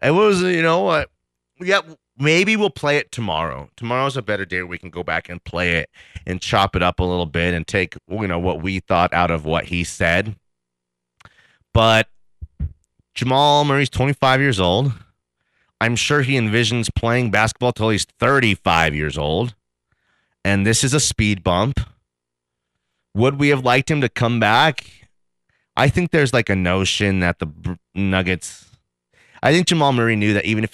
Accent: American